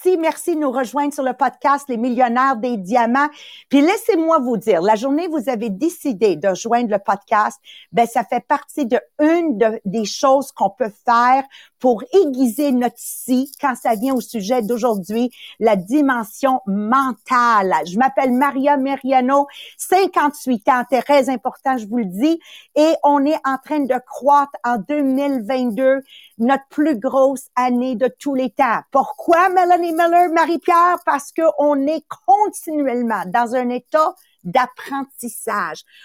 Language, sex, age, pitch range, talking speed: English, female, 50-69, 240-305 Hz, 155 wpm